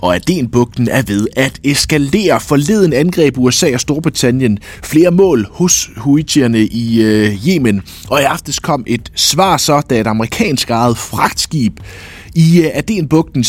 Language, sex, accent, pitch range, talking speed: Danish, male, native, 100-150 Hz, 140 wpm